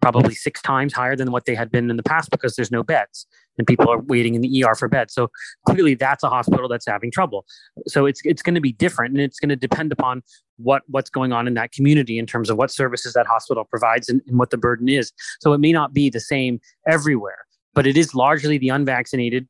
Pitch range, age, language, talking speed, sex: 120-155 Hz, 30-49, English, 250 wpm, male